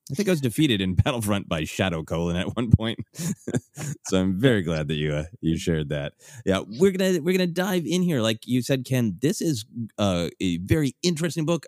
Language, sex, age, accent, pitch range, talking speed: English, male, 30-49, American, 85-125 Hz, 215 wpm